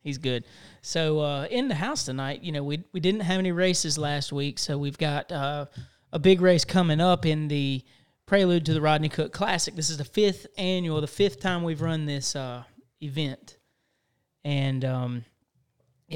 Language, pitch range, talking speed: English, 135-170 Hz, 185 wpm